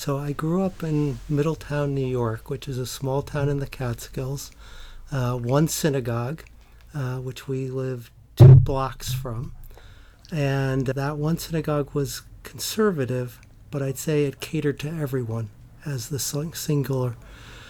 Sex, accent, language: male, American, English